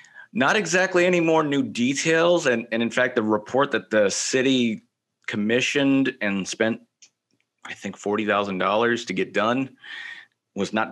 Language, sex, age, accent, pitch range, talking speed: English, male, 30-49, American, 105-130 Hz, 145 wpm